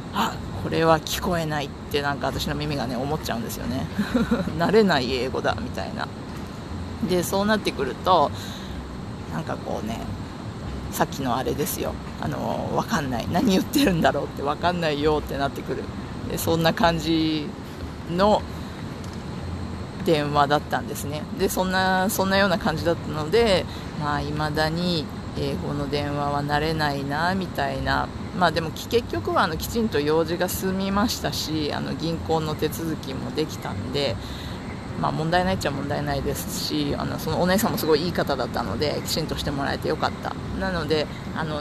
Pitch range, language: 150-195 Hz, Japanese